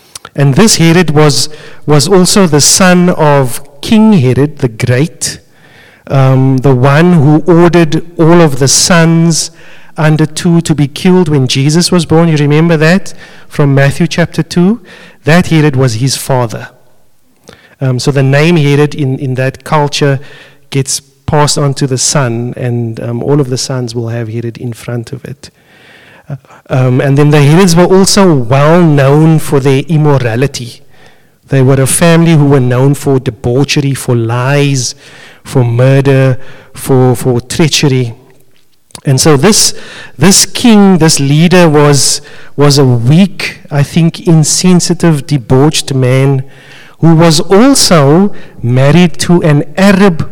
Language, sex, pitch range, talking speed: English, male, 135-165 Hz, 145 wpm